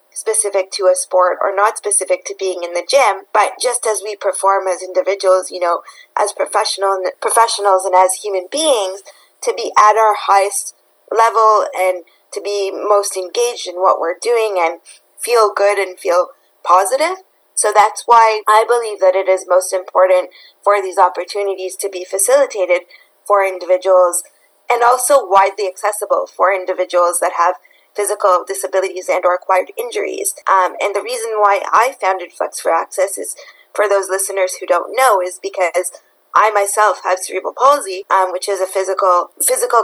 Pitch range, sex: 185-210 Hz, female